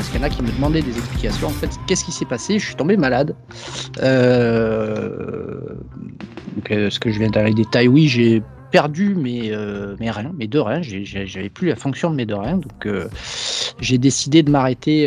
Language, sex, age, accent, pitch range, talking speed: French, male, 30-49, French, 115-155 Hz, 220 wpm